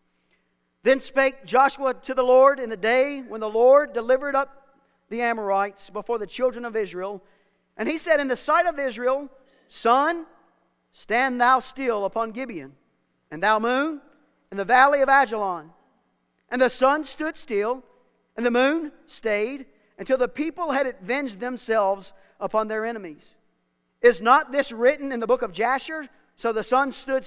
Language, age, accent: English, 40-59, American